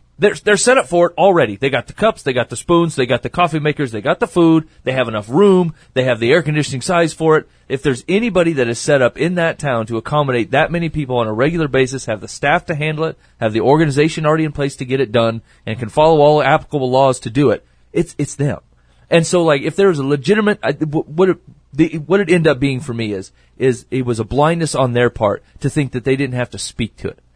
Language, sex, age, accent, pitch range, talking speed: English, male, 30-49, American, 125-170 Hz, 260 wpm